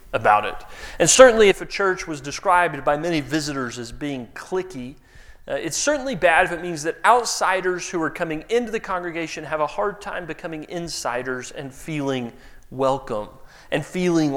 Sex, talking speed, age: male, 170 wpm, 30-49